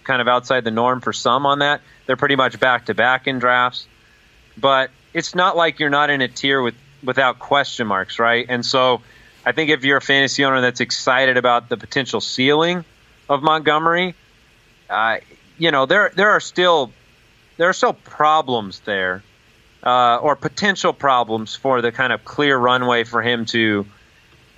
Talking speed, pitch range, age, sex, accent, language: 180 wpm, 115-150 Hz, 30-49, male, American, English